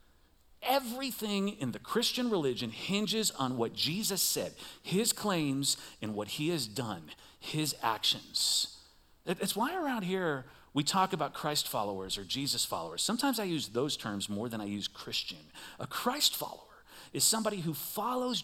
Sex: male